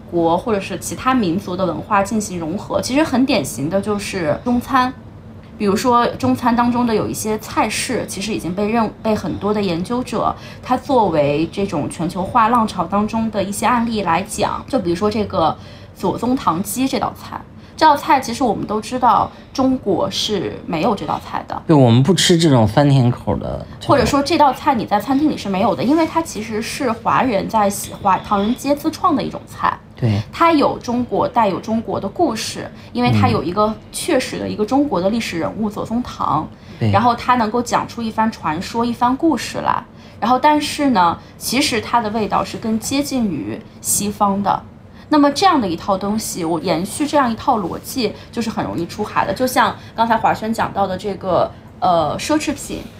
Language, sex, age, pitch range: Chinese, female, 20-39, 185-250 Hz